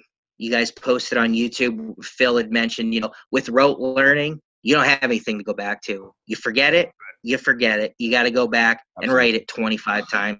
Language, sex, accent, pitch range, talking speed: English, male, American, 115-175 Hz, 215 wpm